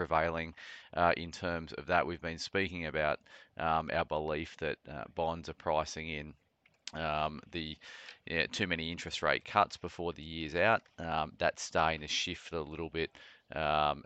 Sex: male